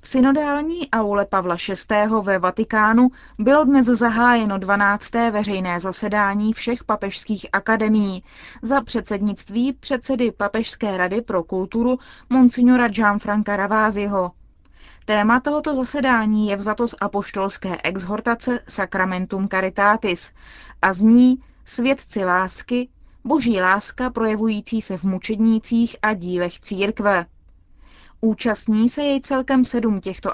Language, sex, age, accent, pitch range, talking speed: Czech, female, 20-39, native, 195-245 Hz, 110 wpm